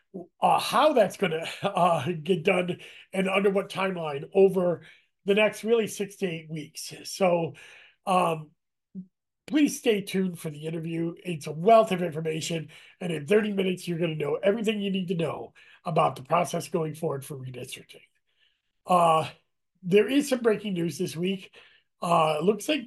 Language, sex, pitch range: English, male, 160-195 Hz